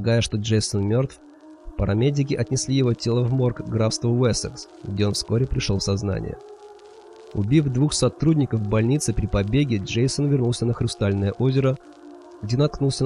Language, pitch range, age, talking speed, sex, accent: Russian, 105-135 Hz, 20-39, 145 wpm, male, native